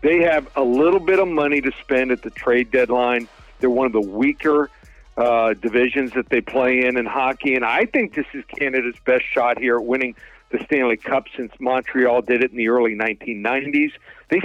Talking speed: 205 wpm